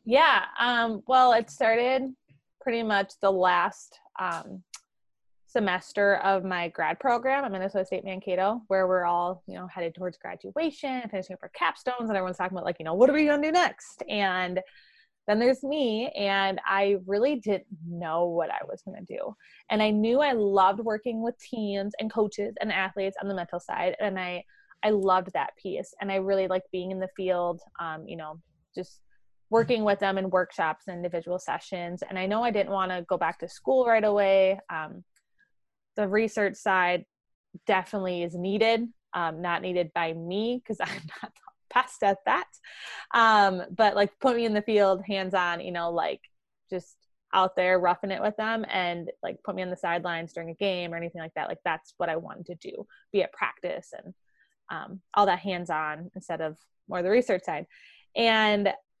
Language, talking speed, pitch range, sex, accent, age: English, 195 wpm, 180-220 Hz, female, American, 20-39